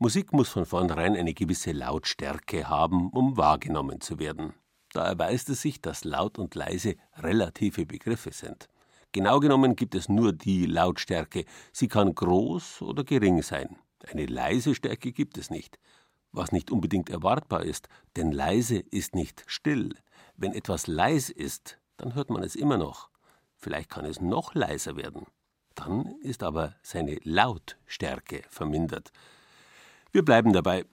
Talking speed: 150 wpm